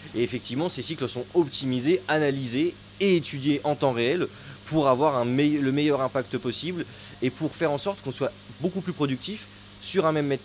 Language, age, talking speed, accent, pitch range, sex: French, 20-39, 195 wpm, French, 110-150 Hz, male